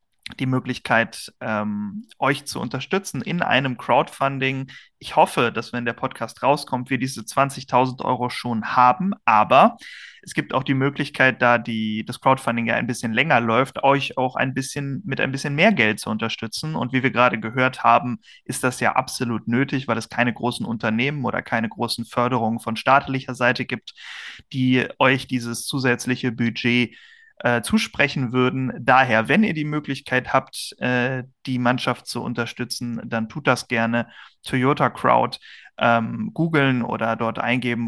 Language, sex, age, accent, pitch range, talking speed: German, male, 30-49, German, 115-130 Hz, 155 wpm